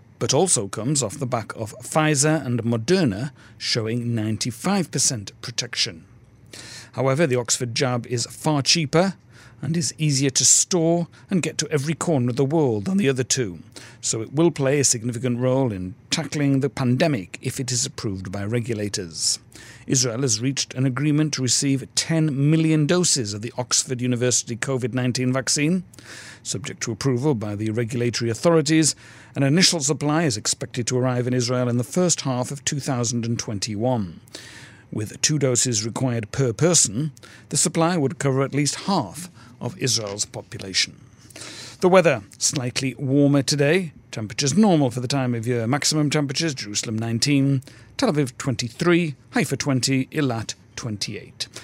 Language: English